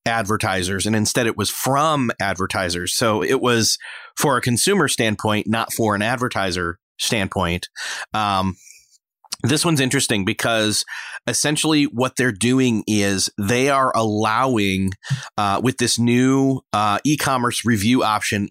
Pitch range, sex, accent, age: 110-135 Hz, male, American, 30-49